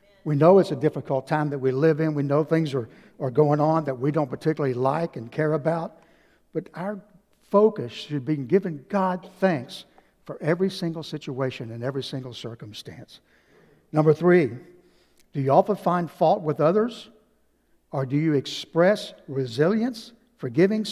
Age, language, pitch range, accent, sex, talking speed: 60-79, English, 135-185 Hz, American, male, 160 wpm